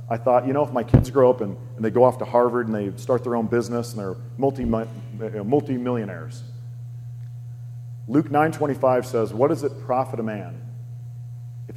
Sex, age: male, 40-59